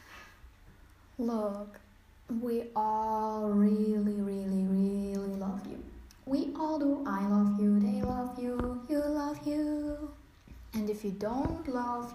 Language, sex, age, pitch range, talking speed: English, female, 10-29, 195-250 Hz, 125 wpm